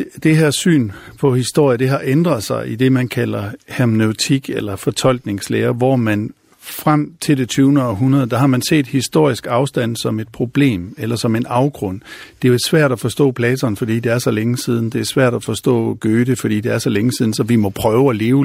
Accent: native